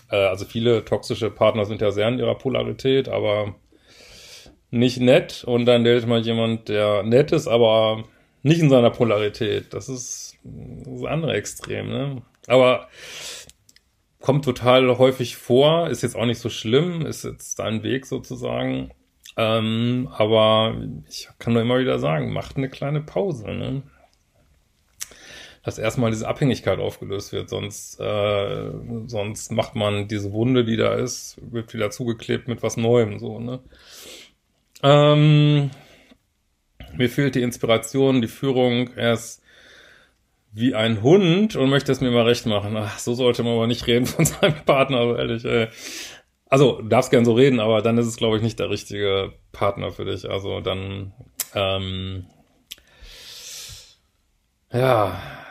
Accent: German